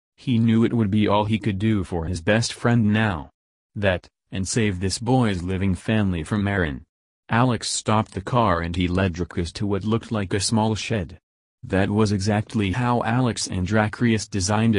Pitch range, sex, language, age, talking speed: 90-115 Hz, male, English, 30-49, 185 wpm